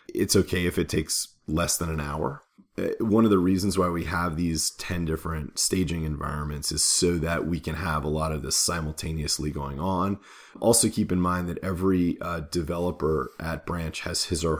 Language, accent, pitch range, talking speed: English, American, 75-95 Hz, 195 wpm